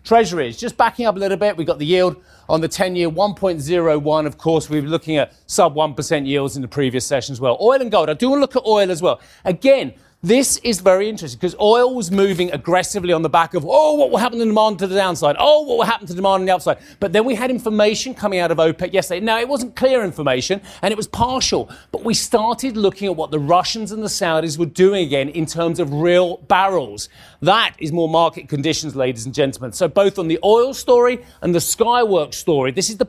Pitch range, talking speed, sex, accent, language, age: 155-210 Hz, 250 wpm, male, British, English, 40-59